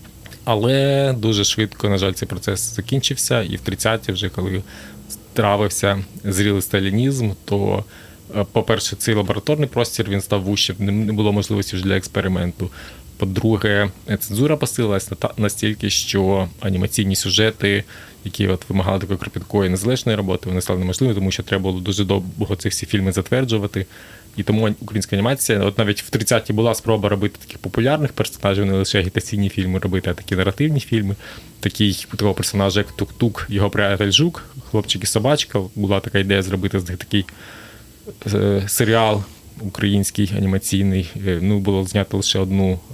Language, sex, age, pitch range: Ukrainian, male, 20-39, 95-110 Hz